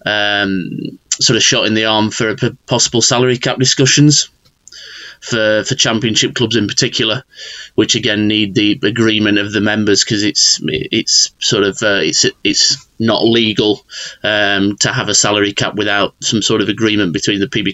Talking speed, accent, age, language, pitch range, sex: 175 wpm, British, 30-49, English, 105-120 Hz, male